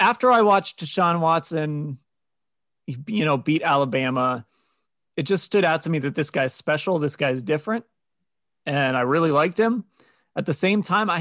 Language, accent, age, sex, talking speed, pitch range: English, American, 30-49, male, 170 wpm, 140-185 Hz